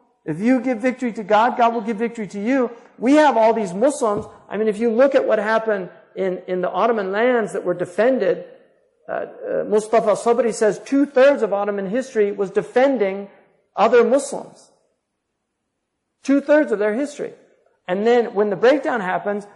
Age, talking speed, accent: 50-69, 170 wpm, American